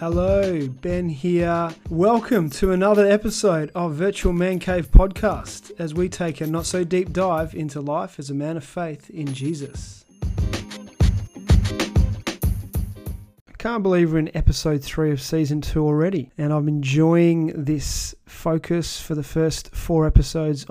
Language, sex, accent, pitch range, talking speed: English, male, Australian, 140-175 Hz, 145 wpm